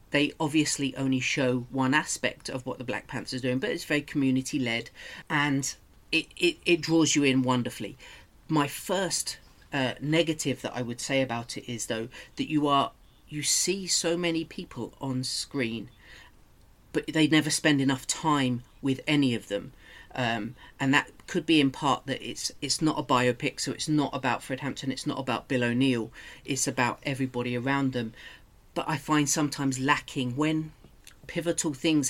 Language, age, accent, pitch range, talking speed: English, 40-59, British, 125-150 Hz, 175 wpm